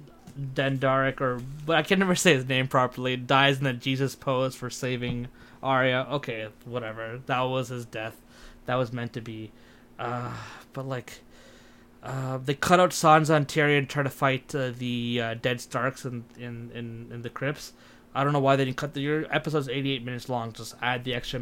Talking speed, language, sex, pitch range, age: 200 wpm, English, male, 120-140 Hz, 20-39